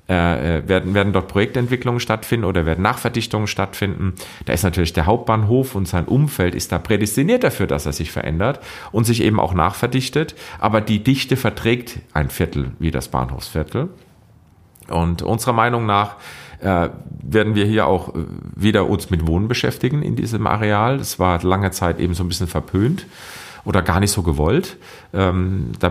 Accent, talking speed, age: German, 165 wpm, 40-59